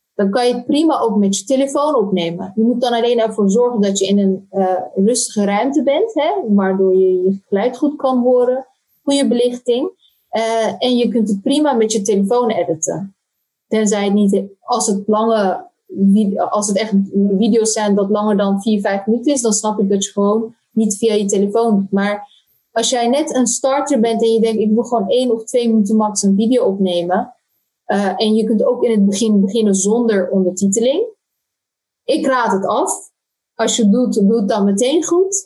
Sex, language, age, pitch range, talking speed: female, Dutch, 20-39, 200-250 Hz, 200 wpm